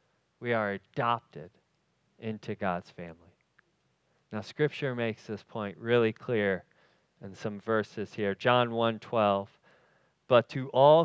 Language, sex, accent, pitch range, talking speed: English, male, American, 125-175 Hz, 125 wpm